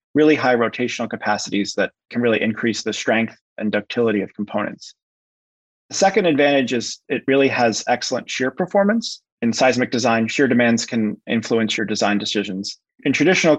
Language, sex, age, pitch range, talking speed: English, male, 30-49, 110-130 Hz, 160 wpm